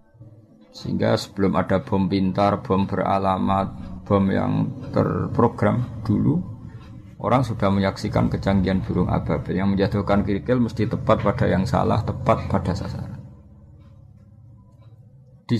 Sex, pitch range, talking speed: male, 95-110 Hz, 110 wpm